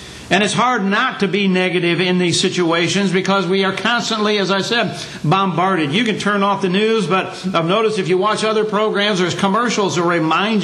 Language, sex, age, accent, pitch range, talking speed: English, male, 60-79, American, 130-190 Hz, 195 wpm